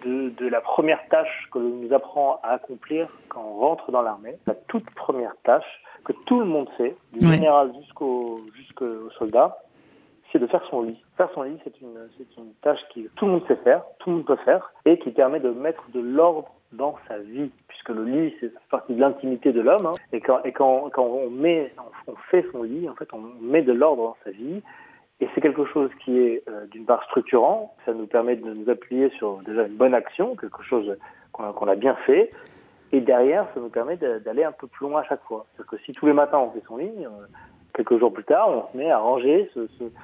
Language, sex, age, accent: French, male, 40-59, French